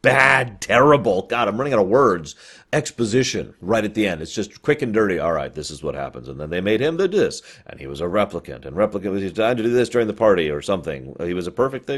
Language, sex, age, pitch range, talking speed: English, male, 30-49, 90-130 Hz, 265 wpm